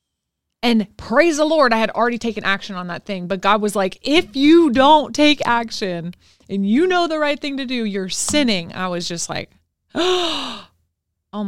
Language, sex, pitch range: English, female, 175-220 Hz